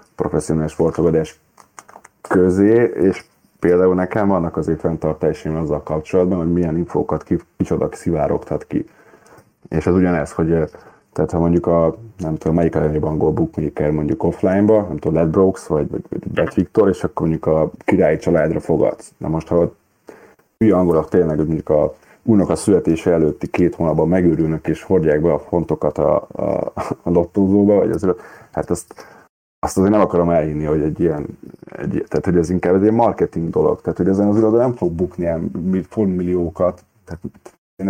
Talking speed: 170 wpm